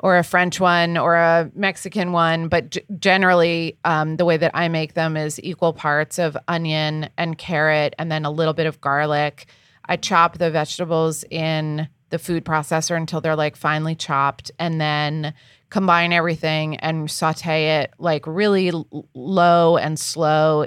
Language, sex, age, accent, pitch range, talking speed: English, female, 30-49, American, 155-175 Hz, 165 wpm